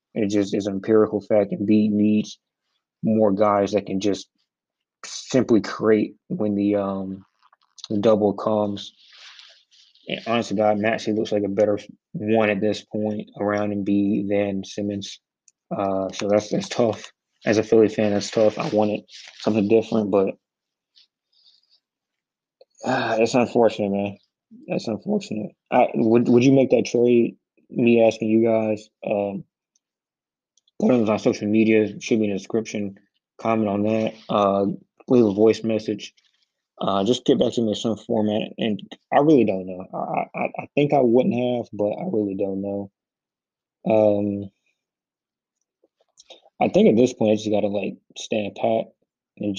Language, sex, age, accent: English, male, 20-39, American